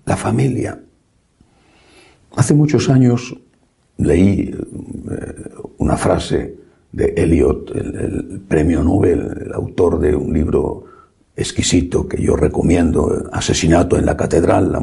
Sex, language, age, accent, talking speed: male, Spanish, 60-79, Spanish, 115 wpm